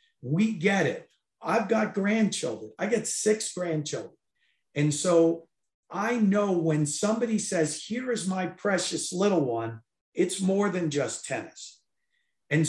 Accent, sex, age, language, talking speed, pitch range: American, male, 50-69, English, 135 wpm, 165-215 Hz